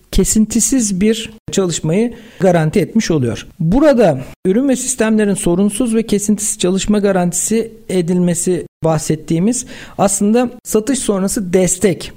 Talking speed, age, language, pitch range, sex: 105 wpm, 50-69, Turkish, 170-230 Hz, male